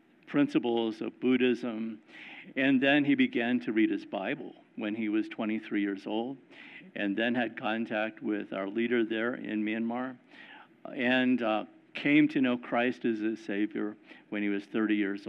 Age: 50-69